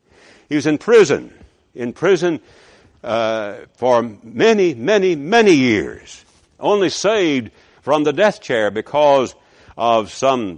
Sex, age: male, 60-79